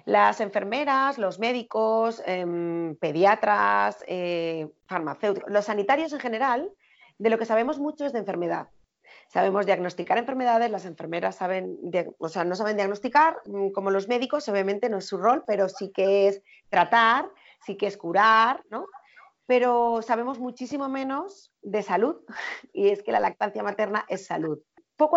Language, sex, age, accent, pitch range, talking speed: Spanish, female, 30-49, Spanish, 180-235 Hz, 155 wpm